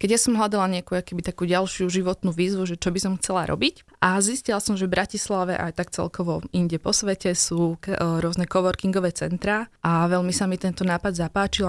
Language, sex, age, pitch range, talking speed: Slovak, female, 20-39, 170-195 Hz, 205 wpm